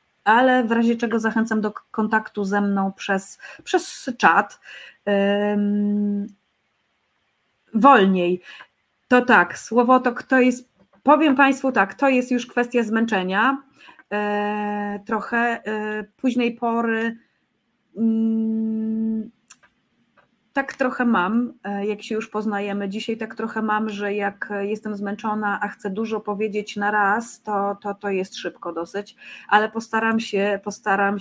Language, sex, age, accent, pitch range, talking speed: Polish, female, 30-49, native, 195-235 Hz, 125 wpm